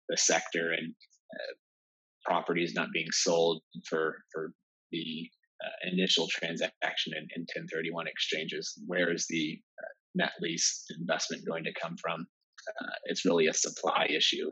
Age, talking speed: 30-49, 145 wpm